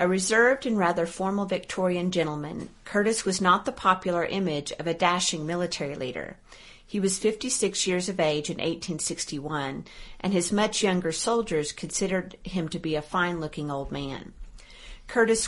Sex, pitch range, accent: female, 165-200 Hz, American